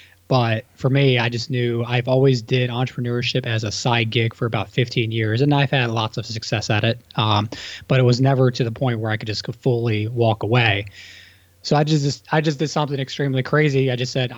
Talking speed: 225 wpm